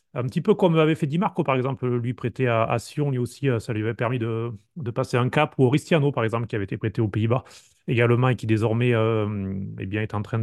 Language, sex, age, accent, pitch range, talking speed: French, male, 30-49, French, 120-155 Hz, 265 wpm